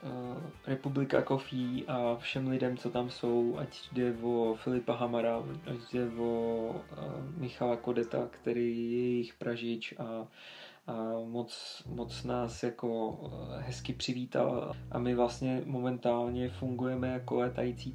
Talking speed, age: 120 wpm, 20-39